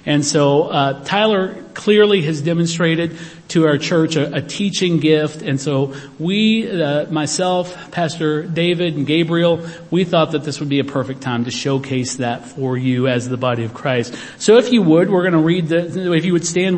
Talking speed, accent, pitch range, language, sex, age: 195 wpm, American, 150-175 Hz, English, male, 50-69